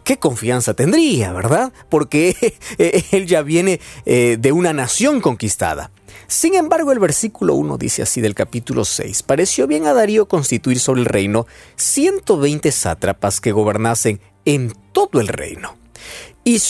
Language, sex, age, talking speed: Spanish, male, 40-59, 140 wpm